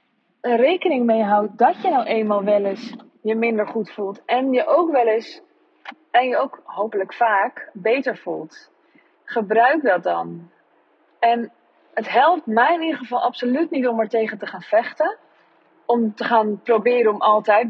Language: Dutch